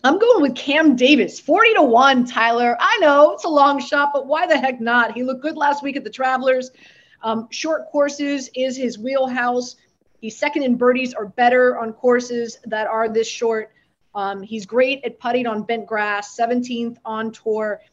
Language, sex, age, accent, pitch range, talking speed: English, female, 30-49, American, 230-275 Hz, 190 wpm